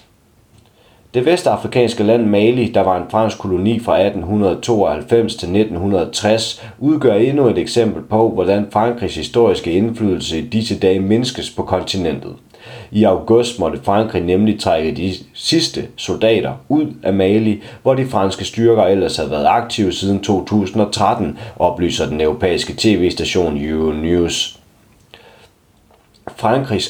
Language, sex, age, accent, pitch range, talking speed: Danish, male, 30-49, native, 90-115 Hz, 125 wpm